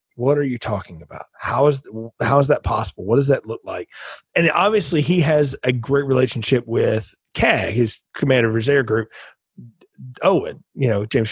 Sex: male